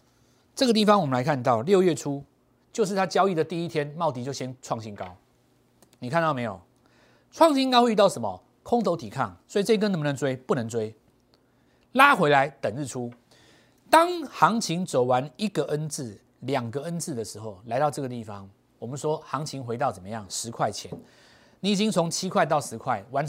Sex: male